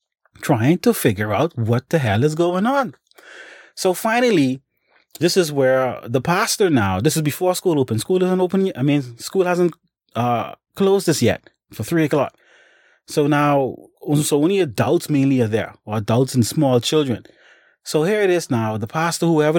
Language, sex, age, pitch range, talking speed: English, male, 30-49, 115-150 Hz, 185 wpm